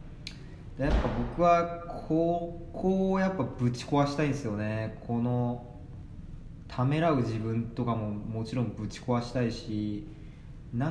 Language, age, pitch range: Japanese, 20-39, 105-145 Hz